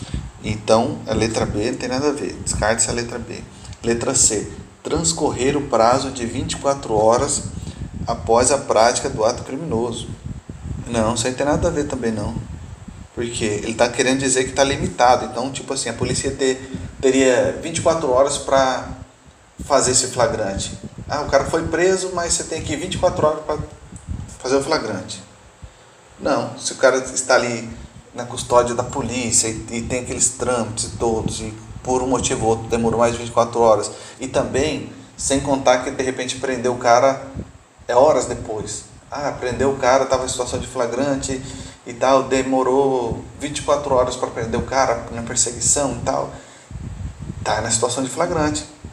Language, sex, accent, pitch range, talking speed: Portuguese, male, Brazilian, 115-135 Hz, 170 wpm